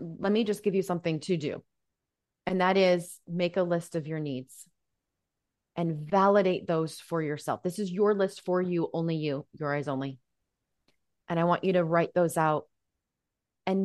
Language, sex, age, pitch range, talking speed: English, female, 20-39, 170-210 Hz, 180 wpm